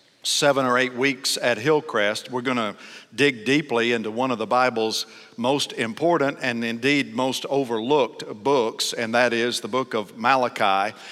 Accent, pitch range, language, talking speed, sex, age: American, 125-145 Hz, English, 160 wpm, male, 50-69